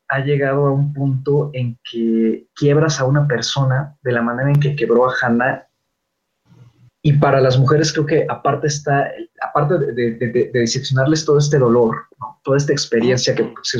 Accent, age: Mexican, 30-49